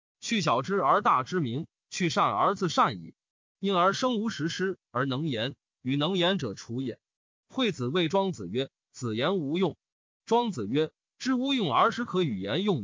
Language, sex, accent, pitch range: Chinese, male, native, 145-215 Hz